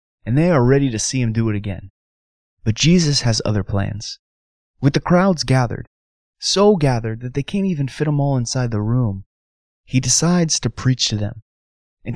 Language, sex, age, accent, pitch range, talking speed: English, male, 20-39, American, 100-150 Hz, 190 wpm